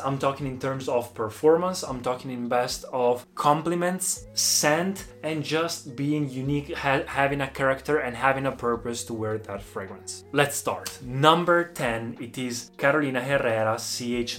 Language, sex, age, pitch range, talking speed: Italian, male, 20-39, 125-145 Hz, 155 wpm